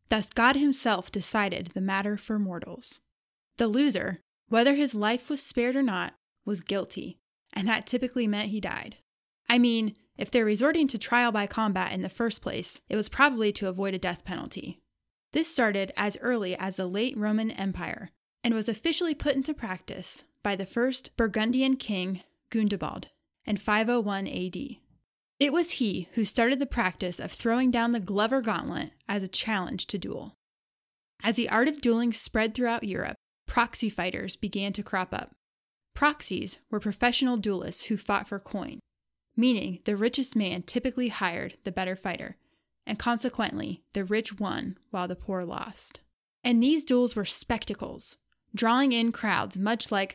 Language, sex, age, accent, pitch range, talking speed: English, female, 10-29, American, 195-240 Hz, 165 wpm